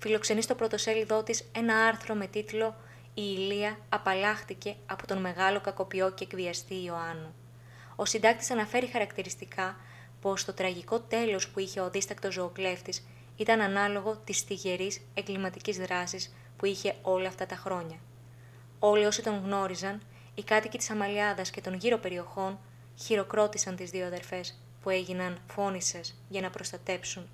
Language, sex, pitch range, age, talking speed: Greek, female, 125-210 Hz, 20-39, 145 wpm